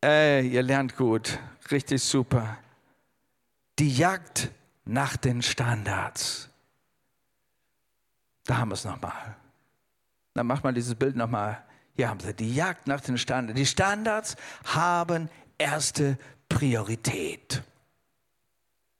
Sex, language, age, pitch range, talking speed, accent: male, German, 50-69, 125-165 Hz, 110 wpm, German